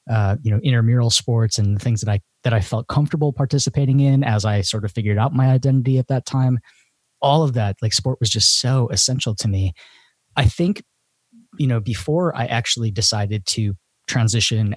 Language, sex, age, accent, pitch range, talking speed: English, male, 20-39, American, 100-125 Hz, 195 wpm